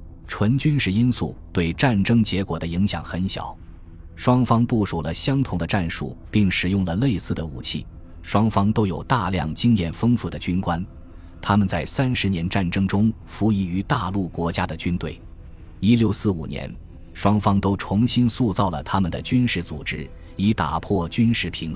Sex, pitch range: male, 85-110 Hz